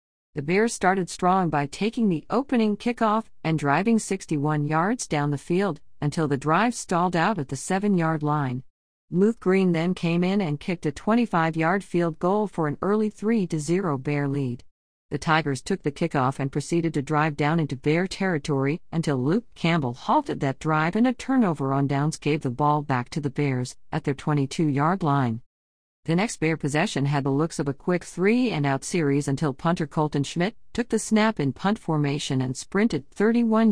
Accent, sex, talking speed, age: American, female, 180 wpm, 50-69